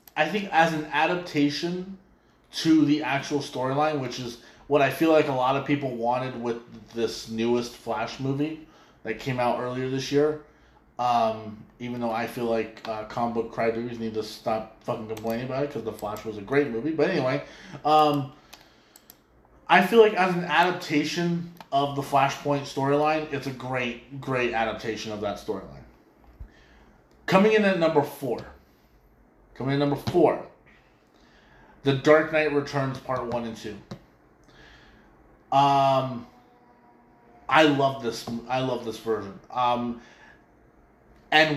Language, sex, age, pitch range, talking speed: English, male, 20-39, 115-150 Hz, 150 wpm